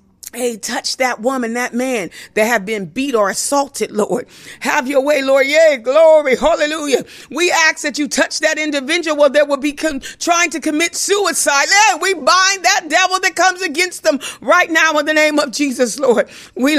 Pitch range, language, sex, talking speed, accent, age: 280-365 Hz, English, female, 190 wpm, American, 50-69